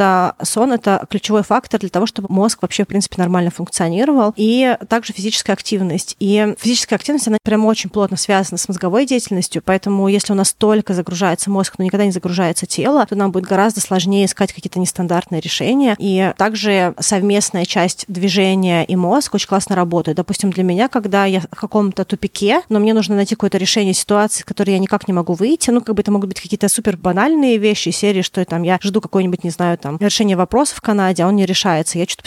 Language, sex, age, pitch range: Russian, female, 30-49, 185-220 Hz